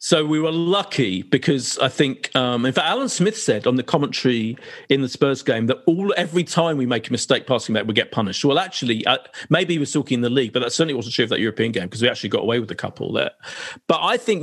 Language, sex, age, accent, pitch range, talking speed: English, male, 40-59, British, 115-160 Hz, 270 wpm